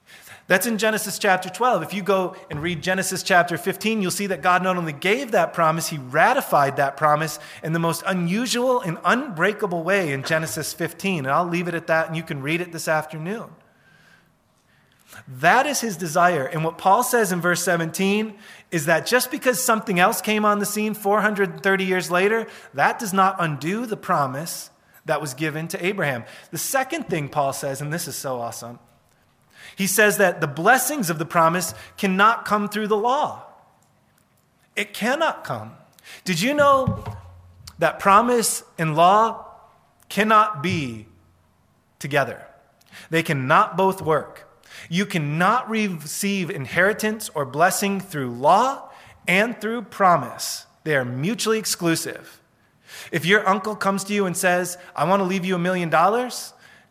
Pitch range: 160-210 Hz